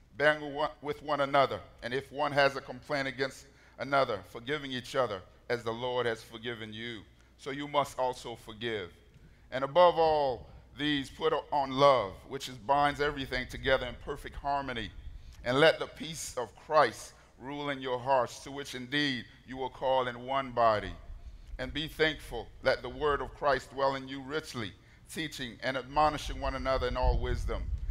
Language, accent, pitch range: English, American, 115-140 Hz